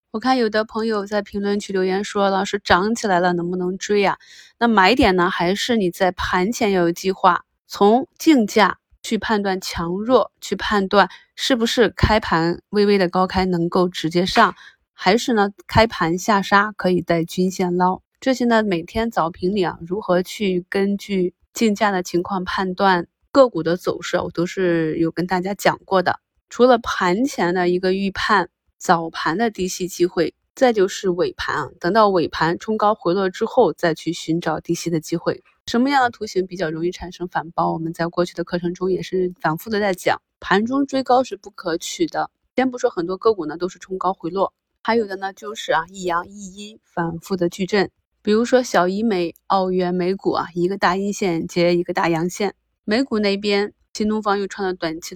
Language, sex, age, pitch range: Chinese, female, 20-39, 175-210 Hz